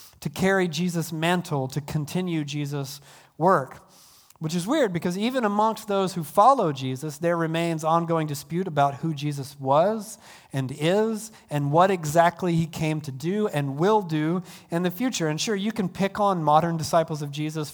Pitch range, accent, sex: 150-190 Hz, American, male